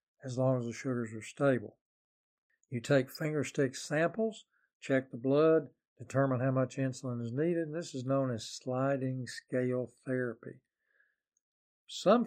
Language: English